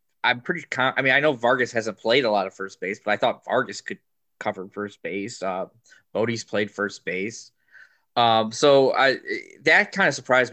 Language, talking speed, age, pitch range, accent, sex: English, 190 wpm, 20-39, 110-150 Hz, American, male